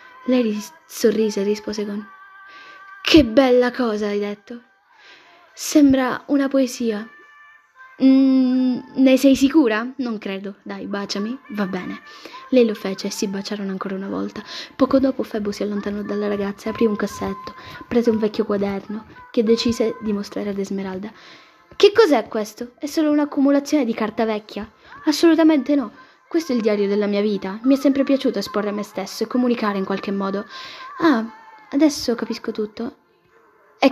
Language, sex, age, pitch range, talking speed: Italian, female, 10-29, 210-275 Hz, 155 wpm